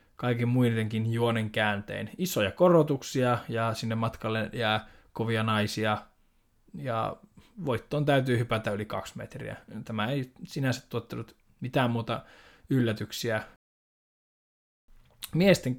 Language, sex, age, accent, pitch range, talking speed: Finnish, male, 20-39, native, 110-145 Hz, 105 wpm